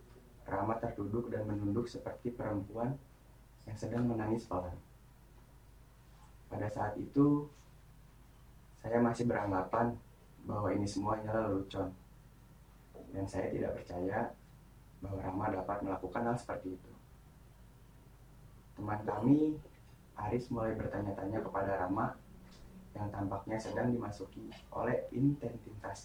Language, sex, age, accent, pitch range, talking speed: Indonesian, male, 20-39, native, 100-120 Hz, 100 wpm